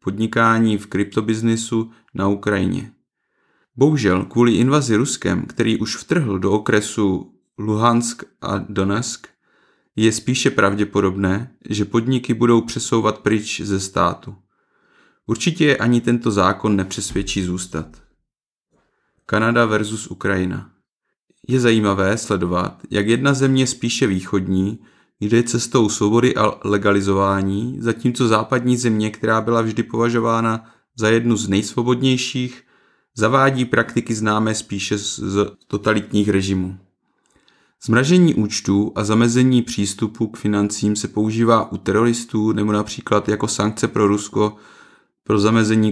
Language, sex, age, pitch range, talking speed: Czech, male, 30-49, 100-115 Hz, 110 wpm